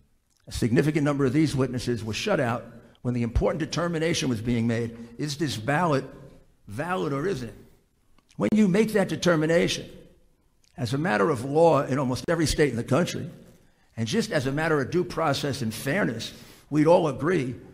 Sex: male